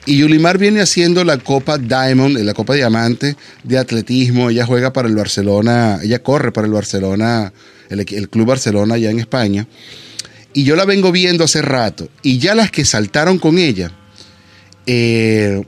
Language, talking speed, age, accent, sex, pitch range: Spanish, 170 wpm, 30-49, Venezuelan, male, 110-145 Hz